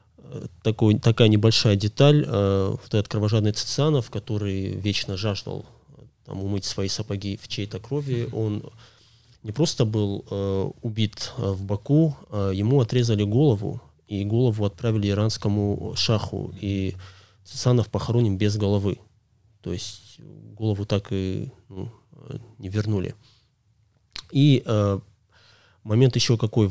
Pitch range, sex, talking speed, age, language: 100-120 Hz, male, 120 wpm, 20-39, Russian